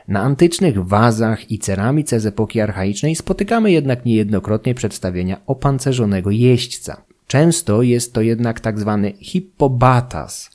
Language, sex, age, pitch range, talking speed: Polish, male, 30-49, 105-145 Hz, 120 wpm